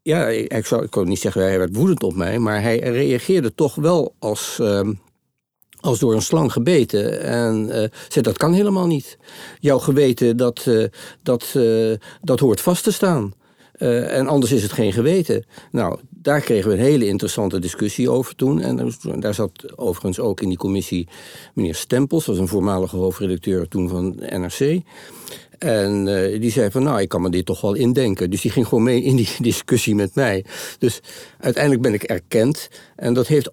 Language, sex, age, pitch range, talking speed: Dutch, male, 60-79, 100-125 Hz, 180 wpm